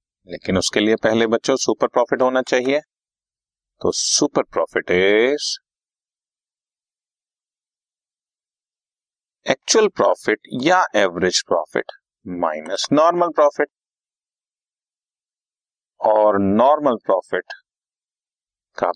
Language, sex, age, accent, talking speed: Hindi, male, 30-49, native, 80 wpm